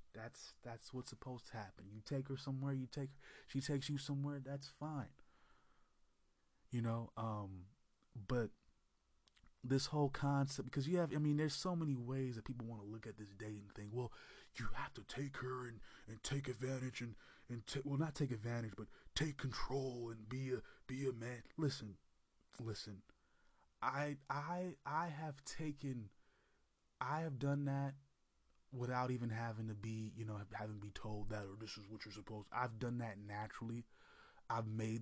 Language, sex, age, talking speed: English, male, 20-39, 185 wpm